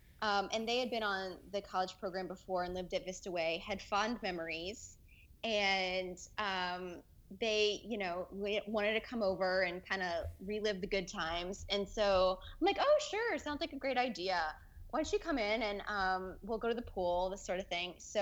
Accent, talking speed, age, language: American, 205 wpm, 20-39, English